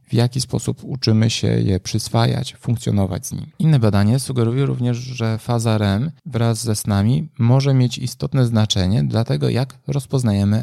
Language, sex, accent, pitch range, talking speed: Polish, male, native, 105-130 Hz, 160 wpm